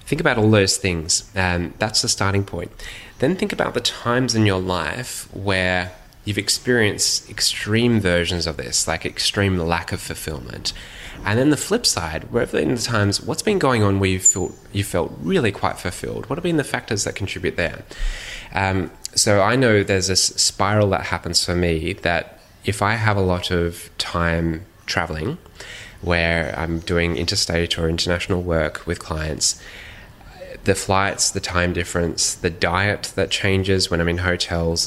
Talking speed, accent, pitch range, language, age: 170 wpm, Australian, 85-105 Hz, English, 10-29